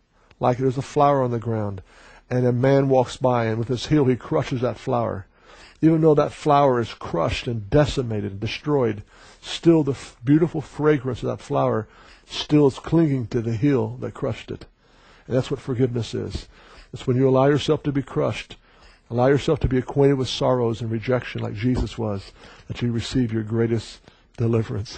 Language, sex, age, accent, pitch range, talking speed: English, male, 60-79, American, 115-140 Hz, 185 wpm